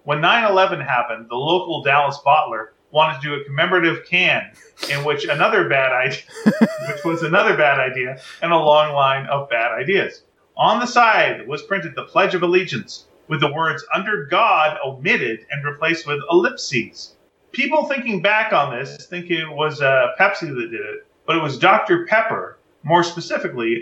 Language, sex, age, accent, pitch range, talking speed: English, male, 40-59, American, 145-195 Hz, 175 wpm